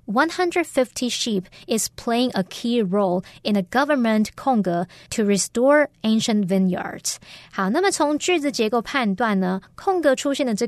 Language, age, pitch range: Chinese, 20-39, 195-260 Hz